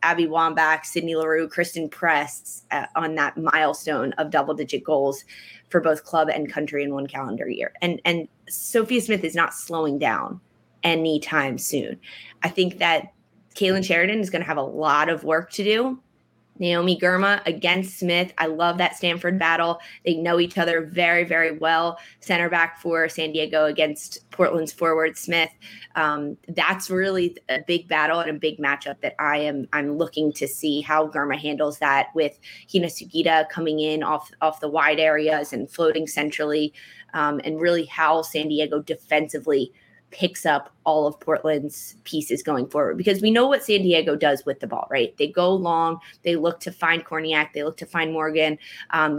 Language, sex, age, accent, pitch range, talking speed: English, female, 20-39, American, 155-175 Hz, 180 wpm